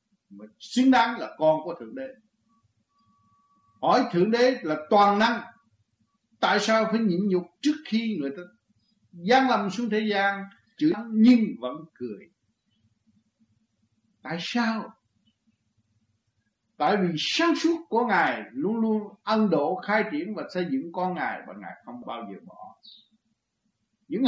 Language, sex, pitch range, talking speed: Vietnamese, male, 155-235 Hz, 145 wpm